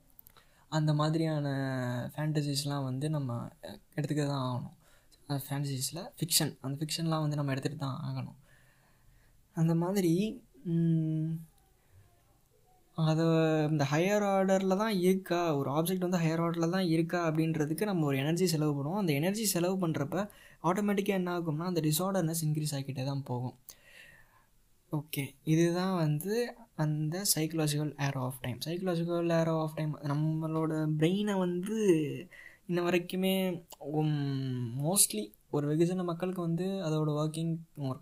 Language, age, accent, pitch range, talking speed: Tamil, 20-39, native, 145-170 Hz, 120 wpm